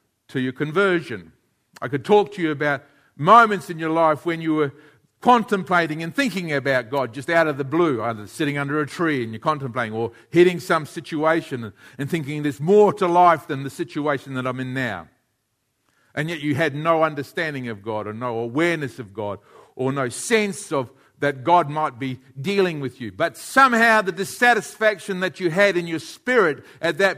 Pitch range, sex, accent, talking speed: 135-195 Hz, male, Australian, 190 wpm